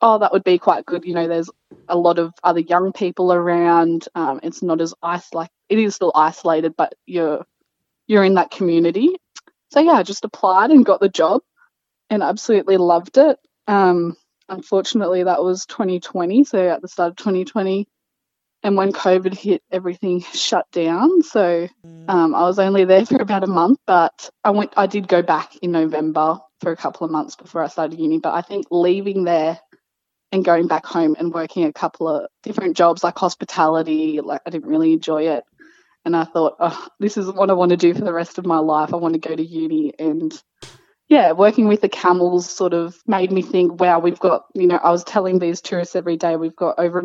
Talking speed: 210 wpm